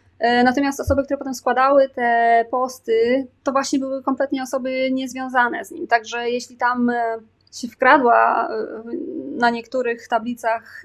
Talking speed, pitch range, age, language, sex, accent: 125 wpm, 225-255 Hz, 20-39, Polish, female, native